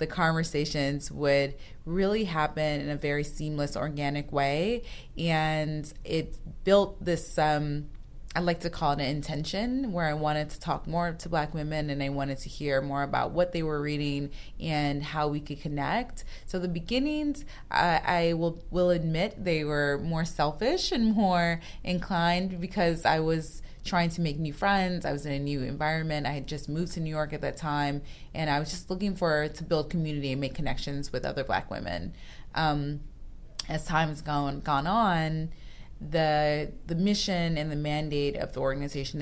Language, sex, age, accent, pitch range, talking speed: English, female, 20-39, American, 145-170 Hz, 180 wpm